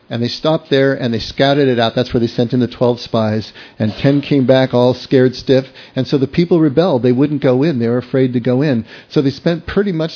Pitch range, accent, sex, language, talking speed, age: 115-150 Hz, American, male, English, 260 wpm, 50-69